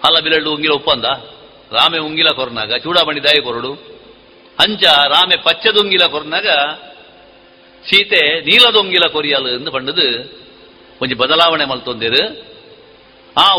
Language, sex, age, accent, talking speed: Kannada, male, 50-69, native, 100 wpm